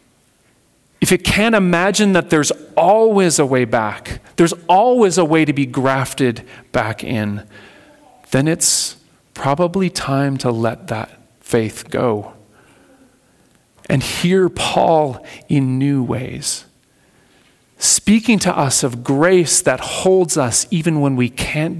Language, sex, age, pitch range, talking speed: English, male, 40-59, 125-175 Hz, 125 wpm